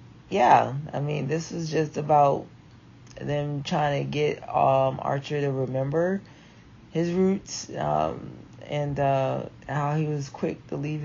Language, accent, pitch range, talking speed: English, American, 120-145 Hz, 140 wpm